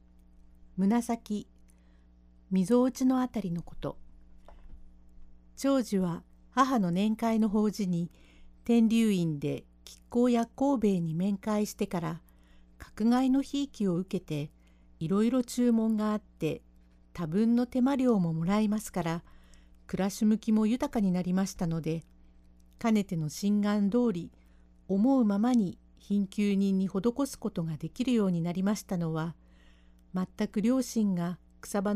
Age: 50-69